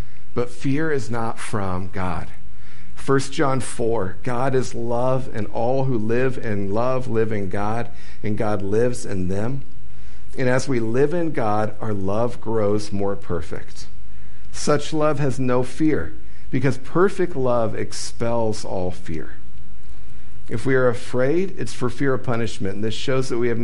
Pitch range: 95-125 Hz